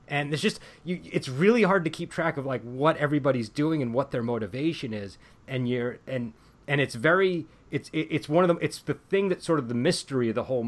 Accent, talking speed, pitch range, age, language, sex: American, 240 wpm, 100-140 Hz, 30-49, English, male